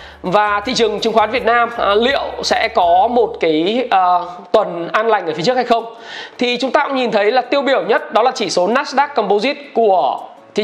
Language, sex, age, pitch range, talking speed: Vietnamese, male, 20-39, 210-255 Hz, 225 wpm